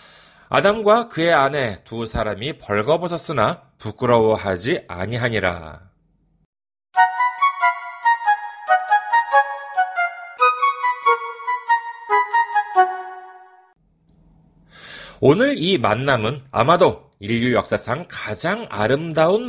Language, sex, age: Korean, male, 40-59